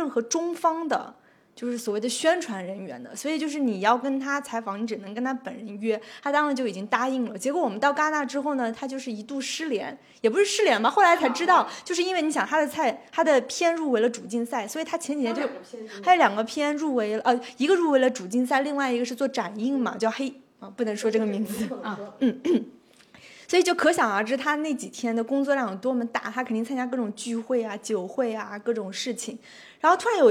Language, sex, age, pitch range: Chinese, female, 20-39, 230-290 Hz